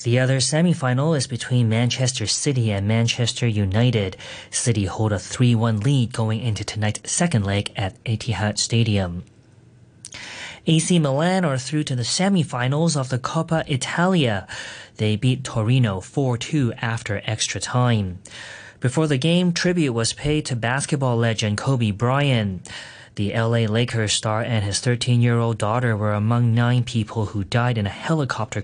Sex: male